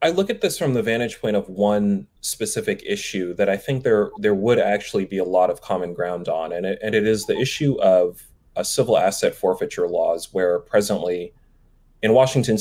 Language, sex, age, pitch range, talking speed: English, male, 30-49, 95-130 Hz, 205 wpm